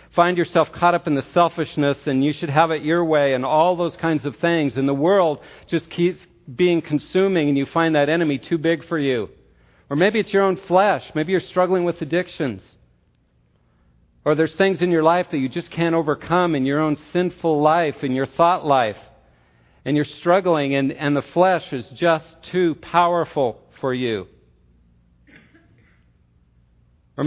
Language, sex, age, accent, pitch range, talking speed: English, male, 50-69, American, 125-170 Hz, 180 wpm